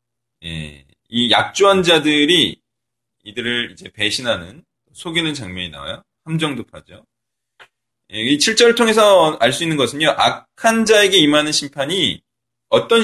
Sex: male